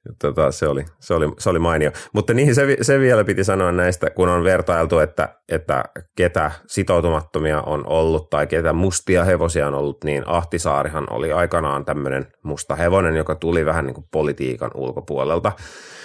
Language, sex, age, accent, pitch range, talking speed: Finnish, male, 30-49, native, 75-90 Hz, 170 wpm